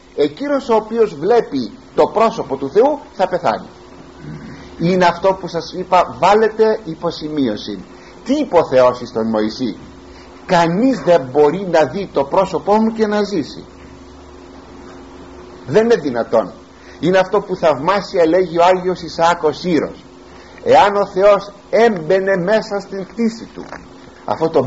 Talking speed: 135 wpm